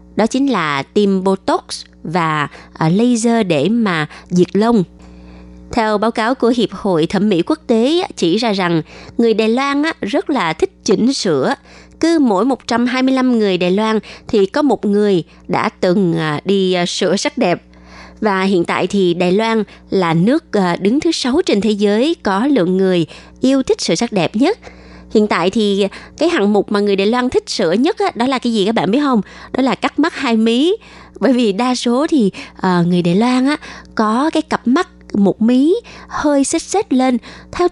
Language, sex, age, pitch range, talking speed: Vietnamese, female, 20-39, 185-265 Hz, 185 wpm